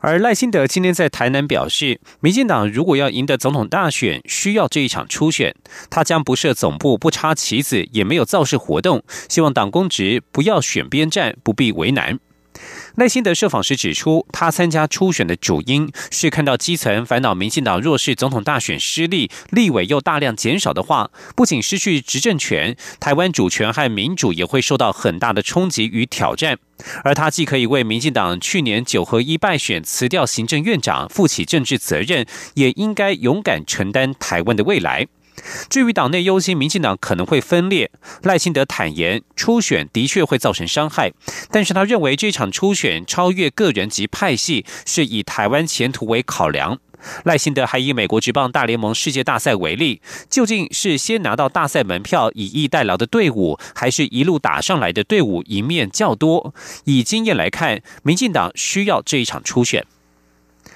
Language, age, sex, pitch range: German, 30-49, male, 120-175 Hz